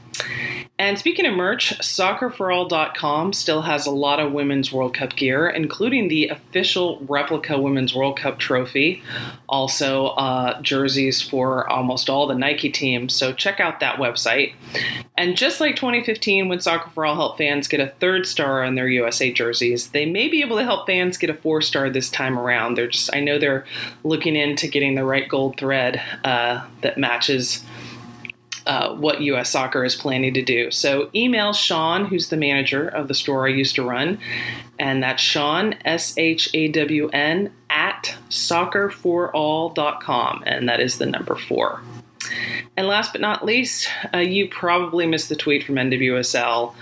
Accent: American